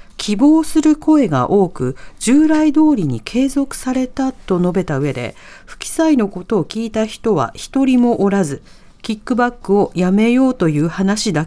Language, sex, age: Japanese, female, 40-59